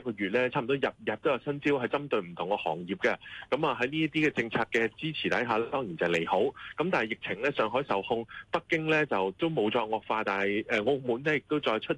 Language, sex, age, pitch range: Chinese, male, 20-39, 105-145 Hz